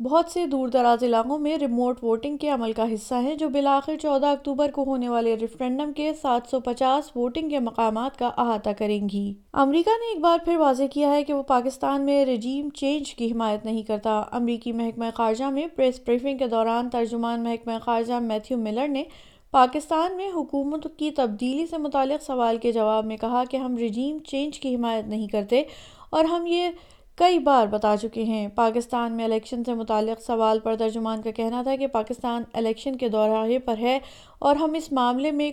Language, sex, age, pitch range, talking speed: Urdu, female, 20-39, 225-280 Hz, 195 wpm